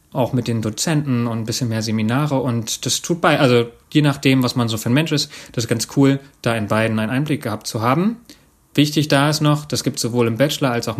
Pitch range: 115-140 Hz